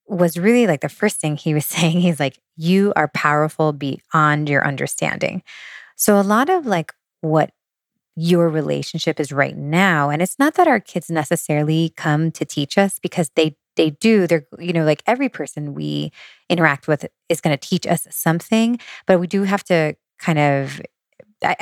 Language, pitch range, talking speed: English, 150-180 Hz, 180 wpm